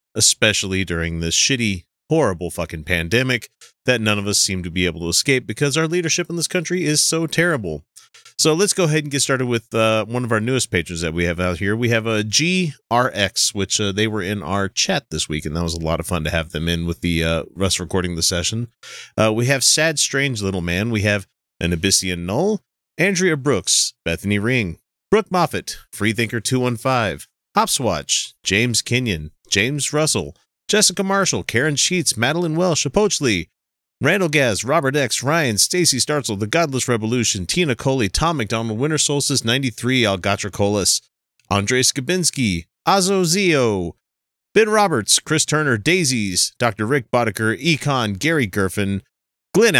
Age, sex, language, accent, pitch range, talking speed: 30-49, male, English, American, 100-150 Hz, 170 wpm